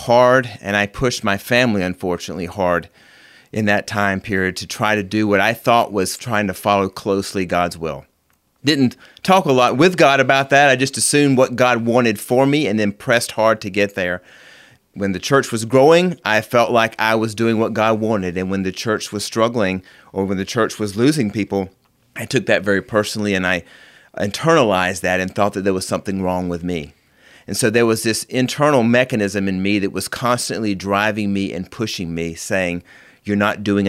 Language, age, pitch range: English, 30-49, 95-120 Hz